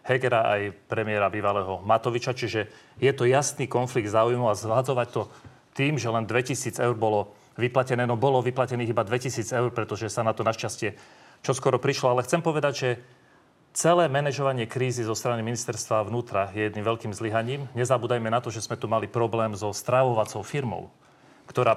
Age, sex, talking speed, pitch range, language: 40-59, male, 170 wpm, 115-140 Hz, Slovak